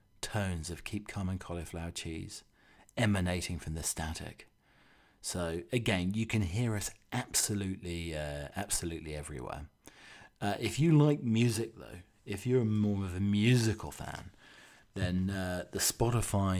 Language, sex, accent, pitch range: English, male, British, 90-105 Hz